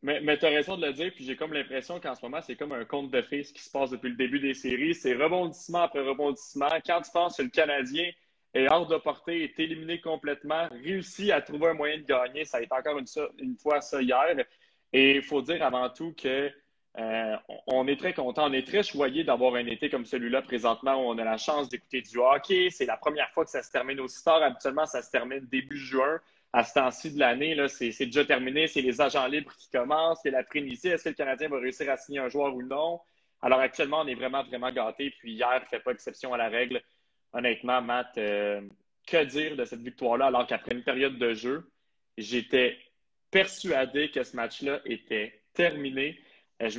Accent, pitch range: Canadian, 125-155 Hz